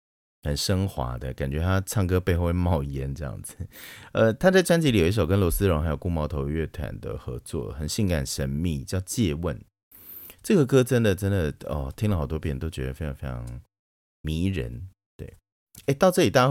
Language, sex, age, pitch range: Chinese, male, 30-49, 70-105 Hz